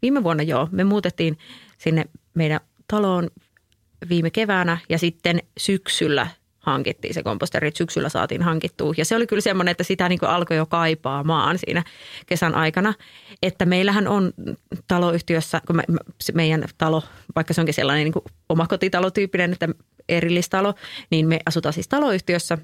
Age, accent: 30-49, native